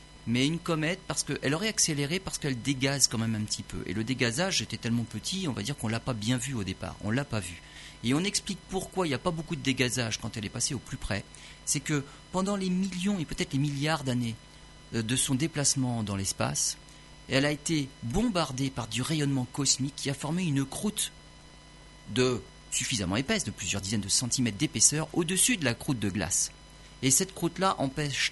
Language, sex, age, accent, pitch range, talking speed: French, male, 40-59, French, 110-150 Hz, 220 wpm